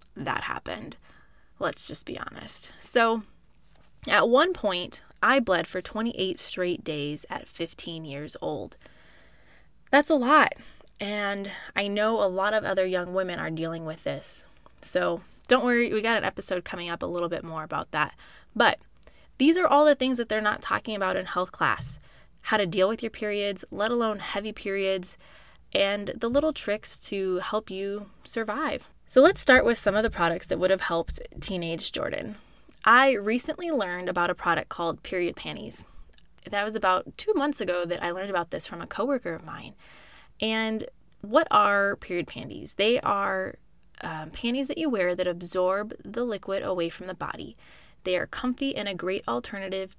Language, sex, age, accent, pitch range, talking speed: English, female, 20-39, American, 180-230 Hz, 180 wpm